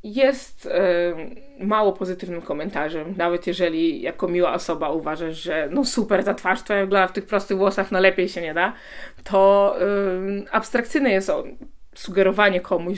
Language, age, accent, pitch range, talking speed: Polish, 20-39, native, 165-200 Hz, 165 wpm